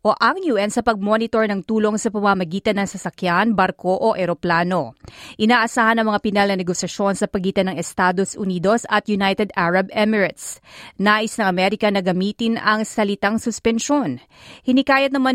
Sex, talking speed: female, 145 wpm